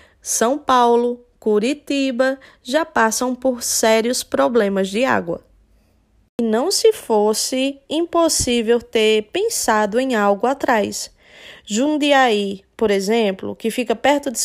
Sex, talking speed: female, 110 wpm